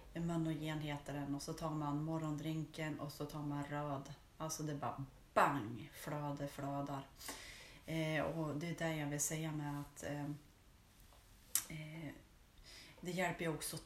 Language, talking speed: Swedish, 150 wpm